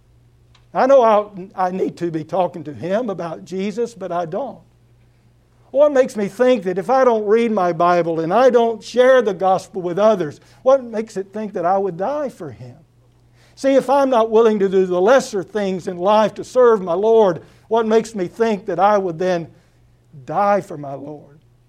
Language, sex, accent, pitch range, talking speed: English, male, American, 130-205 Hz, 200 wpm